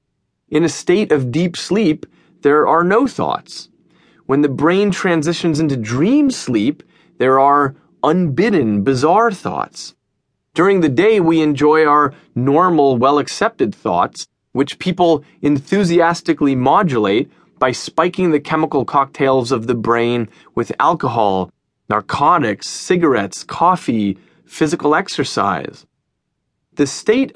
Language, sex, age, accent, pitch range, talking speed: English, male, 30-49, American, 140-190 Hz, 115 wpm